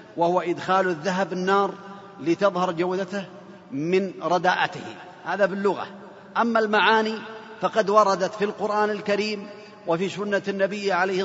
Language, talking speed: Arabic, 110 wpm